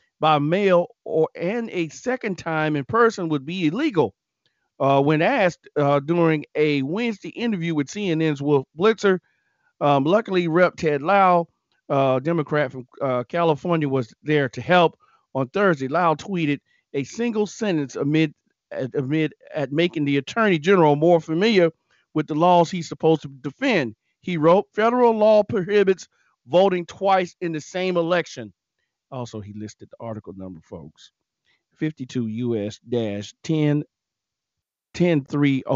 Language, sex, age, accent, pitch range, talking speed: English, male, 40-59, American, 140-175 Hz, 135 wpm